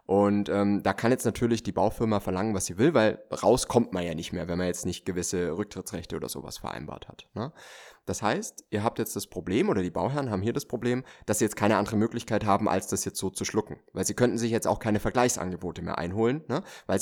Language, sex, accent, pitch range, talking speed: German, male, German, 95-120 Hz, 235 wpm